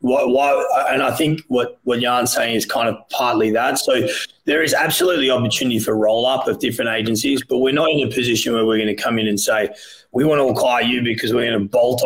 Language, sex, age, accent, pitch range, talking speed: English, male, 30-49, Australian, 115-130 Hz, 240 wpm